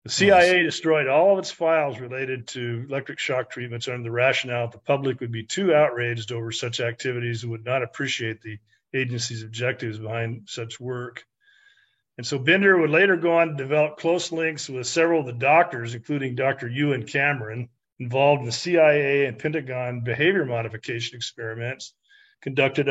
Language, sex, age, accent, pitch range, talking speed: English, male, 50-69, American, 120-155 Hz, 170 wpm